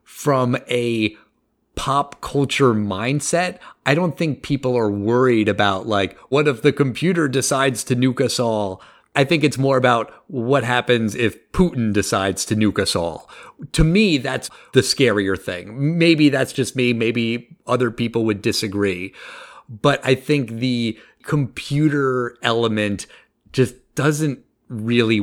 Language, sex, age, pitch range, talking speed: English, male, 30-49, 110-140 Hz, 145 wpm